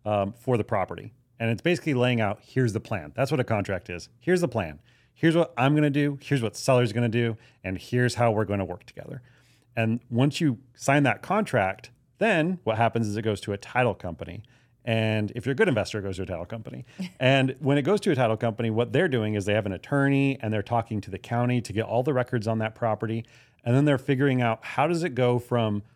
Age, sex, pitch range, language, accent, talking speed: 30-49, male, 110-135 Hz, English, American, 250 wpm